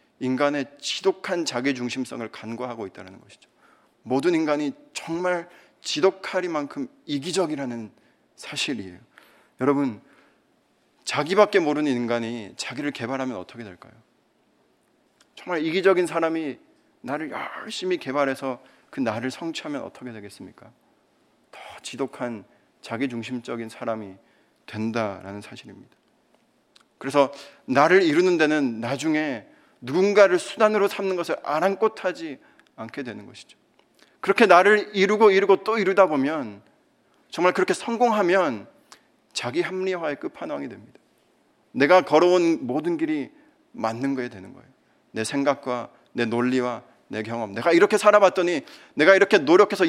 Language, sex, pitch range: Korean, male, 125-195 Hz